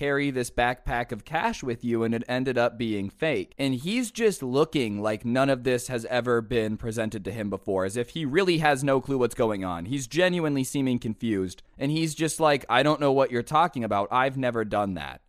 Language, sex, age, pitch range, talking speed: English, male, 20-39, 120-160 Hz, 225 wpm